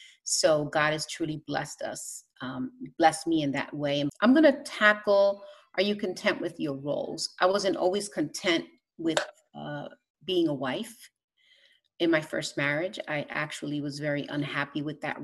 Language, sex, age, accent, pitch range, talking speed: English, female, 30-49, American, 150-205 Hz, 165 wpm